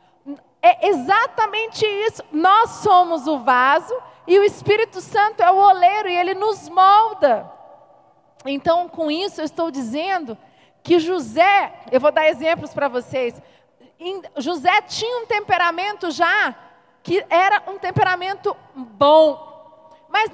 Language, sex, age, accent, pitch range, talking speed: Portuguese, female, 40-59, Brazilian, 300-395 Hz, 125 wpm